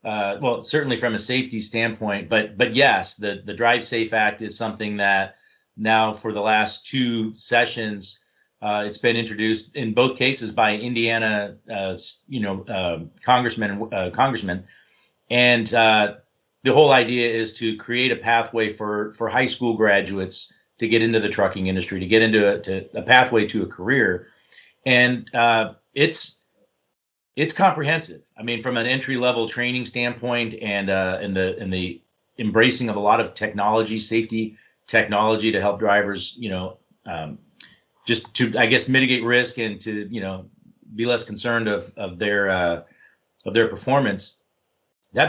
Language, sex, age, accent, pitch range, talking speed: English, male, 40-59, American, 105-120 Hz, 170 wpm